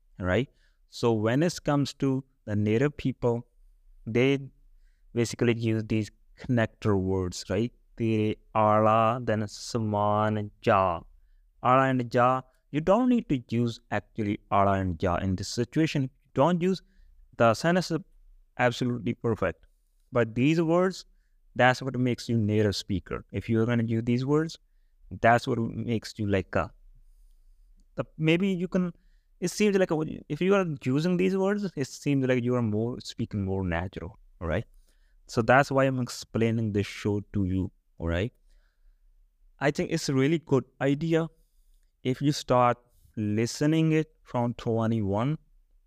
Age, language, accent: 30-49, English, Indian